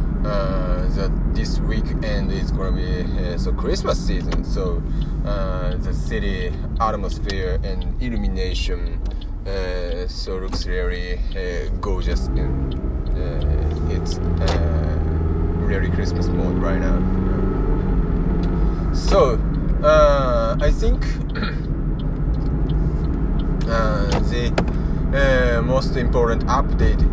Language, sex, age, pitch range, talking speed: English, male, 30-49, 75-95 Hz, 95 wpm